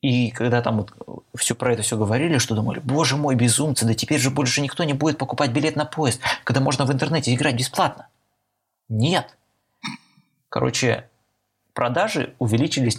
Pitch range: 115-135 Hz